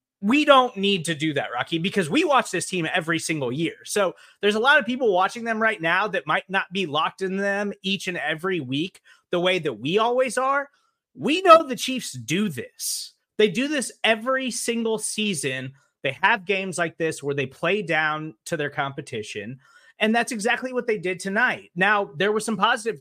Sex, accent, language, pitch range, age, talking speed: male, American, English, 145-210 Hz, 30-49, 205 wpm